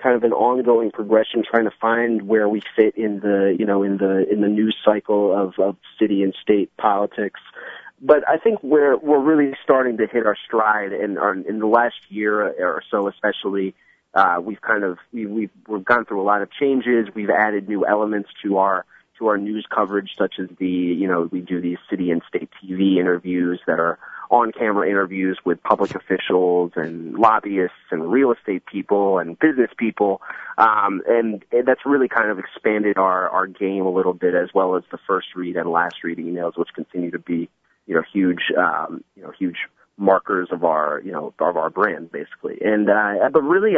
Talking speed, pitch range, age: 205 wpm, 95-115 Hz, 30-49